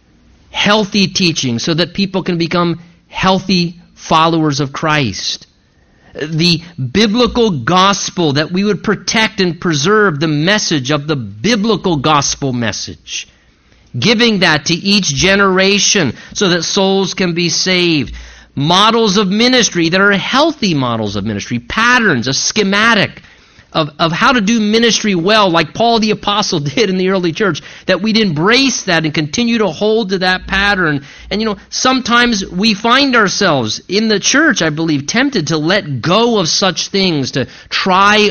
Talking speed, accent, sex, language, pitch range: 155 wpm, American, male, English, 160-220 Hz